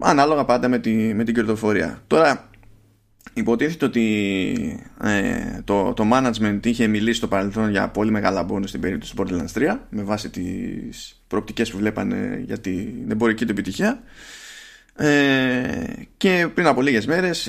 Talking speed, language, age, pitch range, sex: 155 wpm, Greek, 20-39, 105-145 Hz, male